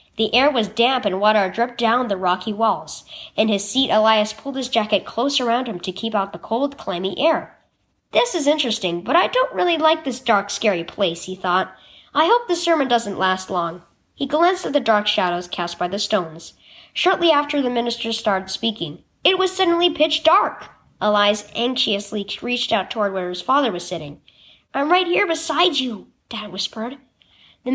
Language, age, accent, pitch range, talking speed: English, 10-29, American, 200-305 Hz, 190 wpm